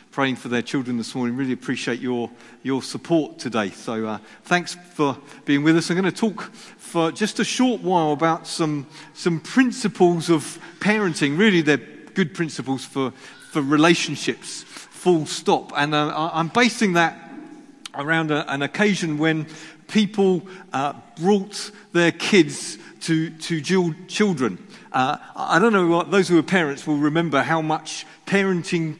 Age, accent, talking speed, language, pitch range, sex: 40-59, British, 155 wpm, English, 150-205 Hz, male